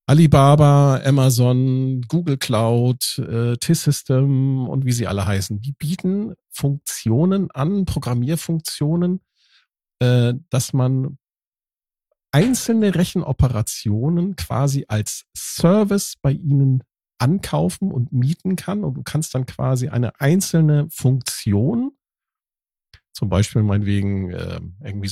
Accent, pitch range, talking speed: German, 115-150 Hz, 95 wpm